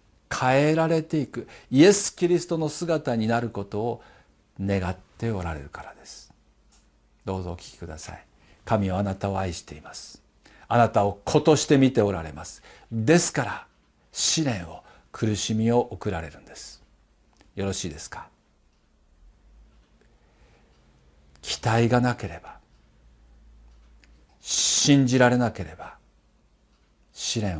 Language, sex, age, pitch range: Japanese, male, 50-69, 85-130 Hz